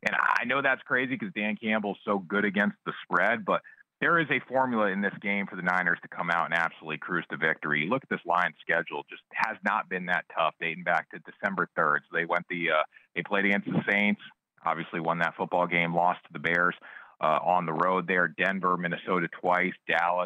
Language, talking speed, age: English, 225 wpm, 40-59